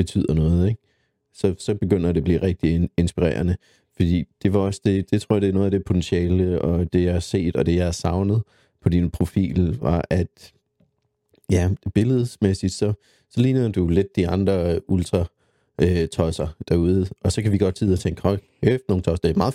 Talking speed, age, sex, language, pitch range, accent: 210 wpm, 30-49, male, Danish, 90-105 Hz, native